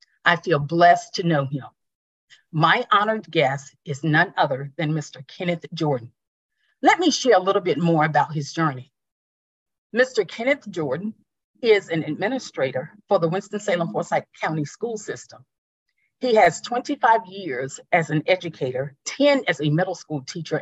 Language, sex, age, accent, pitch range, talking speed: English, female, 40-59, American, 150-220 Hz, 150 wpm